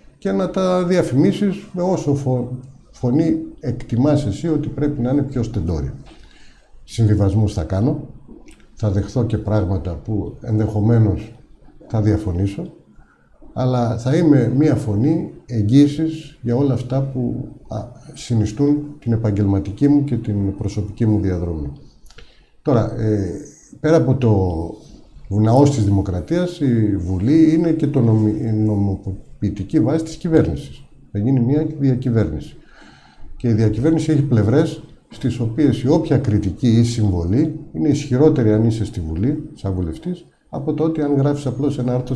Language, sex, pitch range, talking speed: Greek, male, 105-145 Hz, 130 wpm